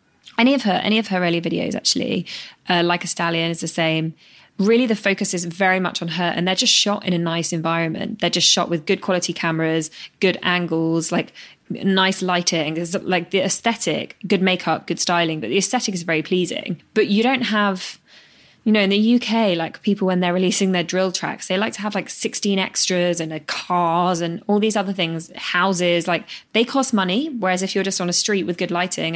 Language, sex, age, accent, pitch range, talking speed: English, female, 20-39, British, 170-205 Hz, 210 wpm